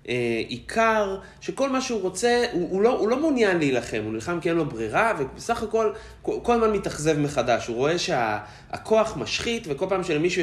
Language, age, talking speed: Hebrew, 30-49, 195 wpm